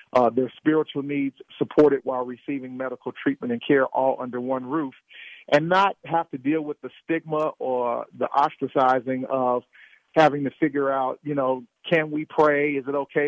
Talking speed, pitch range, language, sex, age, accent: 175 wpm, 125-150 Hz, English, male, 50-69, American